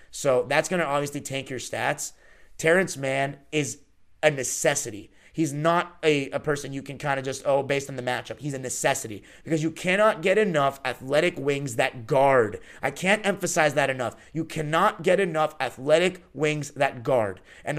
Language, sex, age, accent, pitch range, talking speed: English, male, 30-49, American, 130-170 Hz, 180 wpm